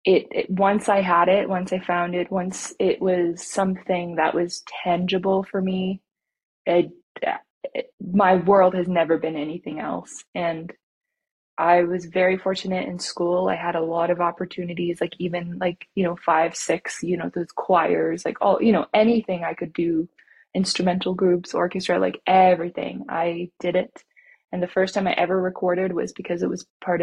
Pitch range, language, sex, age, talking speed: 170-190 Hz, English, female, 20-39, 180 wpm